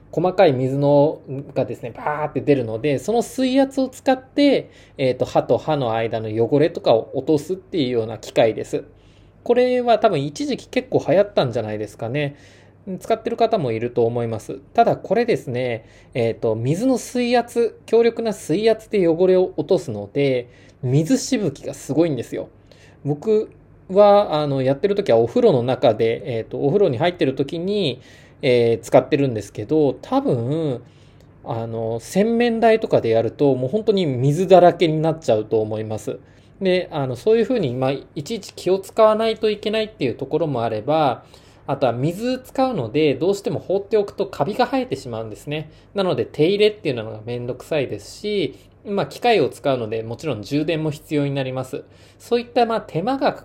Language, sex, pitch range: Japanese, male, 125-210 Hz